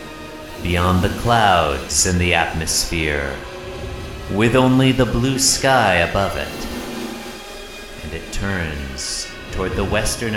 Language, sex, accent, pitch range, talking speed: English, male, American, 85-115 Hz, 110 wpm